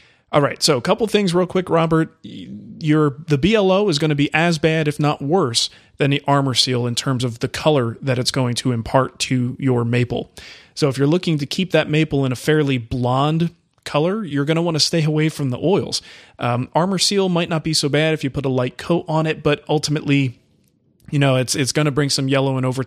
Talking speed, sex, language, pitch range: 235 wpm, male, English, 130-160 Hz